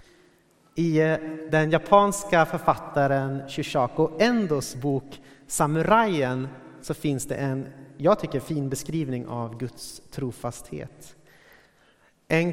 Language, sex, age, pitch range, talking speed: Swedish, male, 30-49, 125-165 Hz, 95 wpm